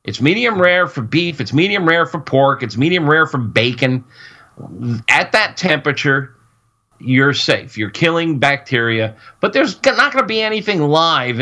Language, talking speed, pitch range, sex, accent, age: English, 165 wpm, 120-155 Hz, male, American, 50-69